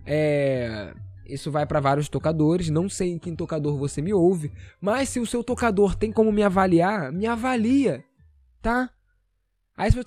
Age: 20-39